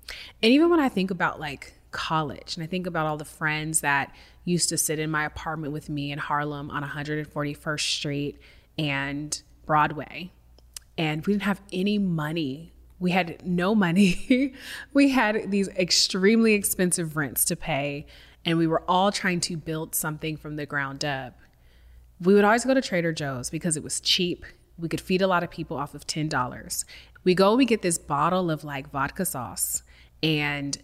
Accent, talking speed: American, 180 wpm